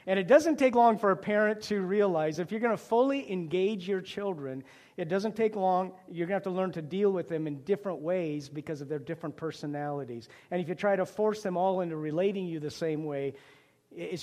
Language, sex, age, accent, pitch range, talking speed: English, male, 50-69, American, 155-190 Hz, 230 wpm